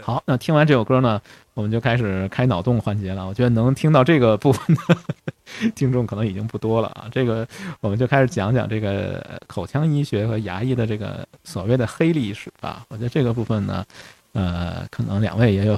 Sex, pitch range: male, 105-135 Hz